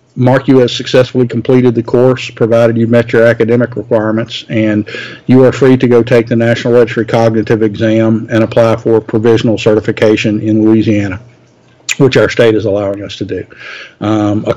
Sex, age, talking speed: male, 50-69, 175 wpm